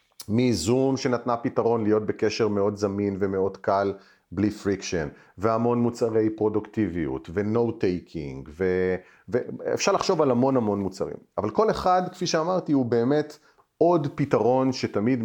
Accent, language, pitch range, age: native, Hebrew, 100-130 Hz, 40-59